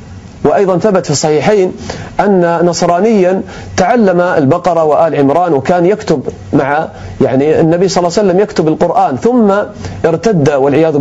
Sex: male